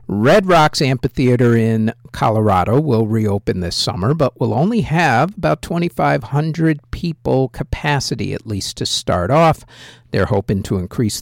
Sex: male